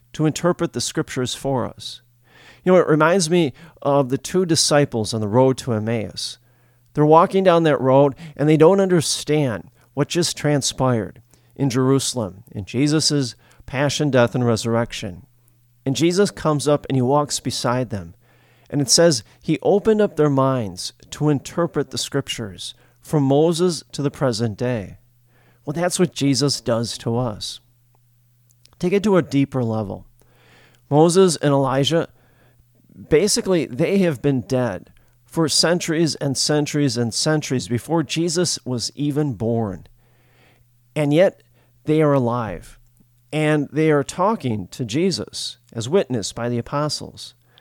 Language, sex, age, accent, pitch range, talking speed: English, male, 40-59, American, 120-155 Hz, 145 wpm